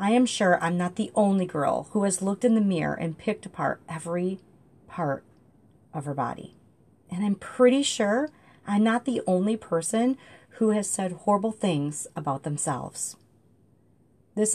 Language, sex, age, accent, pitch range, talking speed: English, female, 40-59, American, 150-205 Hz, 160 wpm